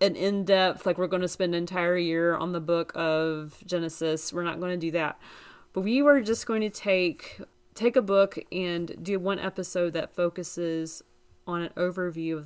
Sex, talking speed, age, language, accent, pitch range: female, 200 wpm, 30-49, English, American, 165-185 Hz